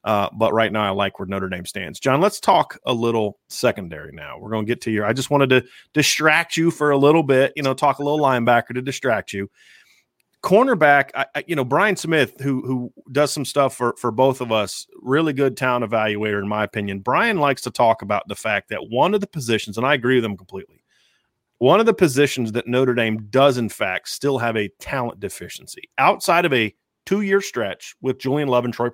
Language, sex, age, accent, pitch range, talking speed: English, male, 30-49, American, 115-150 Hz, 230 wpm